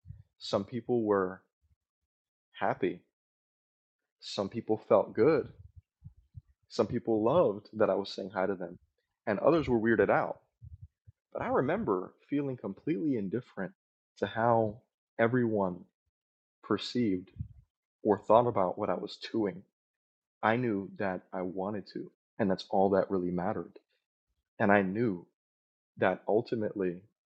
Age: 20-39